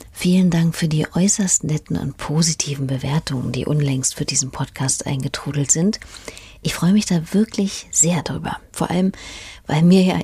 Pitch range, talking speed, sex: 145-185 Hz, 165 wpm, female